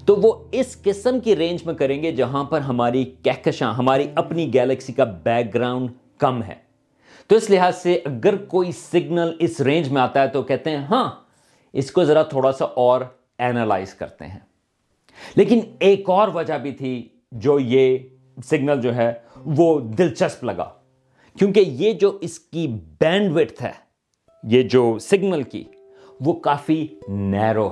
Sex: male